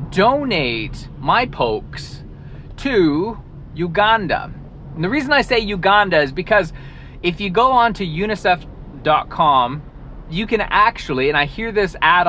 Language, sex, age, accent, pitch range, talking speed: English, male, 30-49, American, 145-210 Hz, 125 wpm